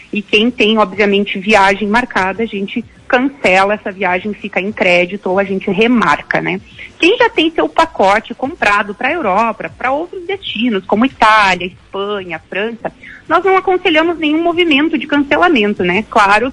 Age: 40-59